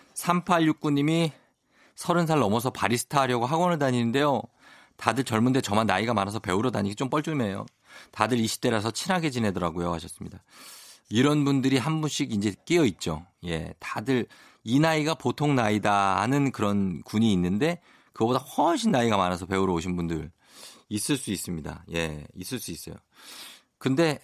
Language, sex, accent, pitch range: Korean, male, native, 100-150 Hz